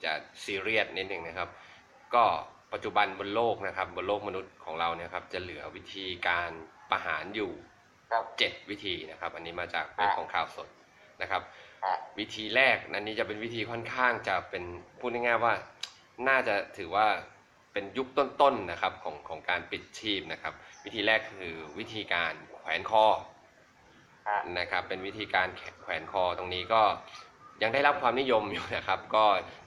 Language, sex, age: Thai, male, 20-39